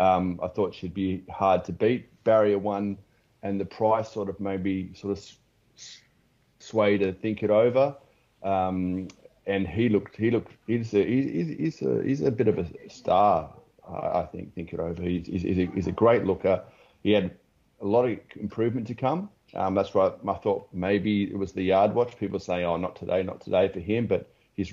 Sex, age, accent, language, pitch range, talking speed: male, 30-49, Australian, English, 90-100 Hz, 195 wpm